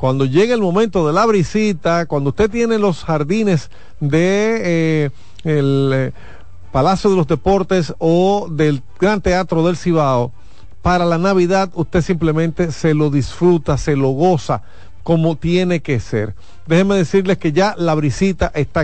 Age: 40-59